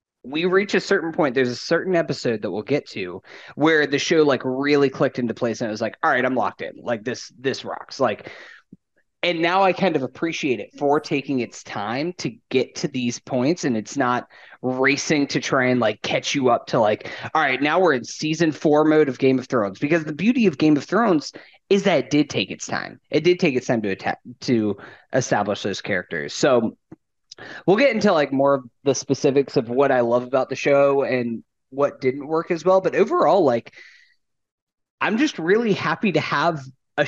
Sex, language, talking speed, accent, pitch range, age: male, English, 215 wpm, American, 130-180 Hz, 30-49